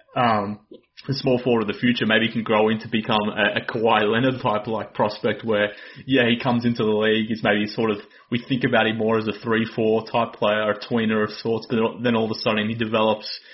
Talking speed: 240 wpm